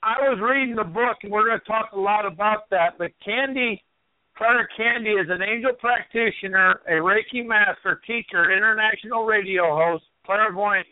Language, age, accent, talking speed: English, 60-79, American, 165 wpm